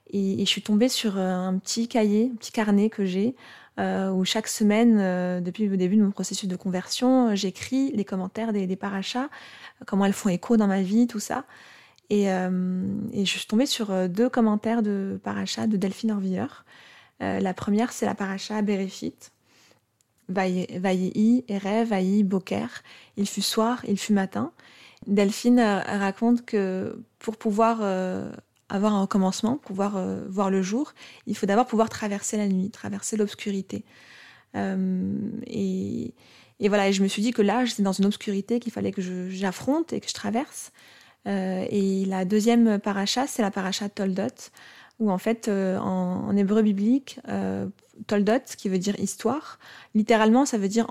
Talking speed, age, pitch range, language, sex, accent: 175 wpm, 20-39, 195-225 Hz, French, female, French